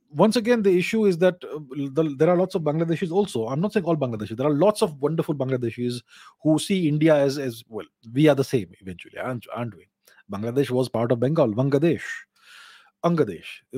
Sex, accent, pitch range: male, Indian, 135-180 Hz